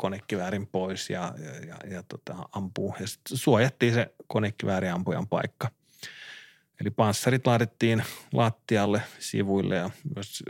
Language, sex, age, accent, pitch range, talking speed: Finnish, male, 30-49, native, 100-125 Hz, 130 wpm